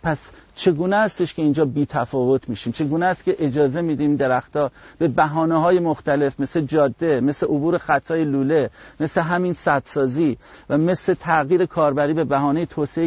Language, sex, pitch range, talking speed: Persian, male, 130-165 Hz, 155 wpm